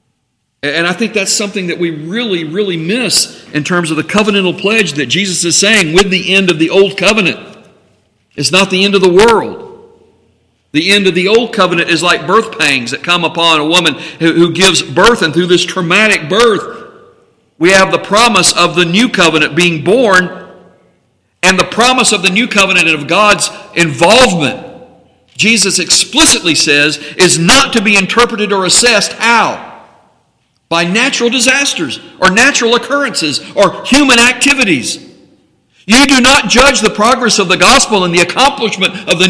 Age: 50-69